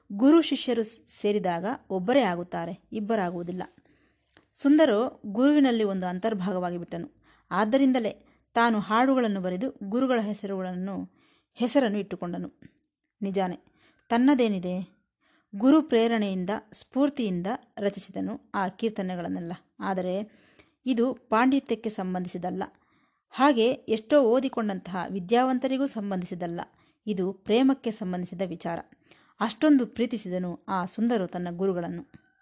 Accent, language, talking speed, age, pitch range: native, Kannada, 85 wpm, 20-39, 190-255 Hz